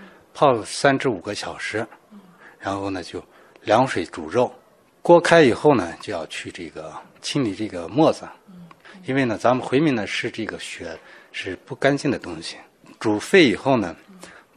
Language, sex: Chinese, male